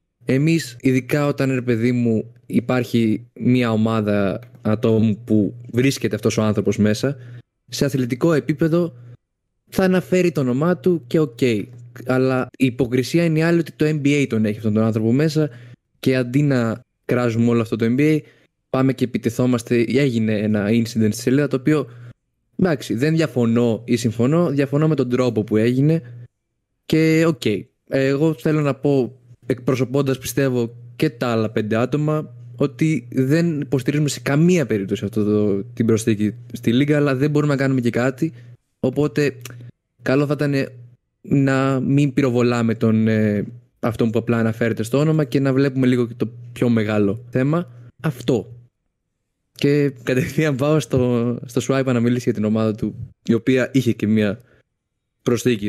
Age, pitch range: 20-39, 115-140 Hz